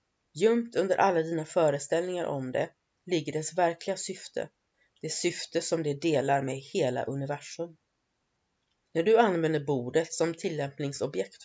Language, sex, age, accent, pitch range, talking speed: Swedish, female, 30-49, native, 145-185 Hz, 130 wpm